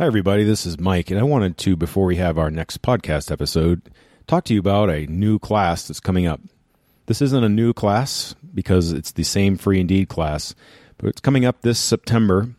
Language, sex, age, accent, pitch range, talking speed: English, male, 40-59, American, 90-115 Hz, 210 wpm